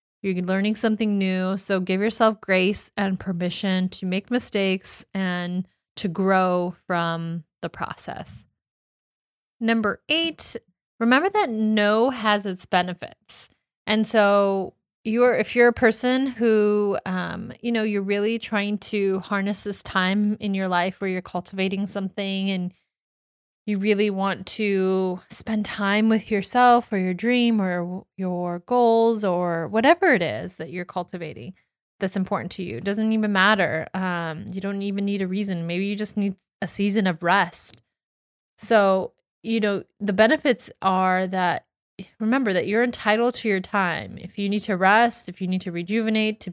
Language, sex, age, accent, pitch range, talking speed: English, female, 20-39, American, 185-220 Hz, 155 wpm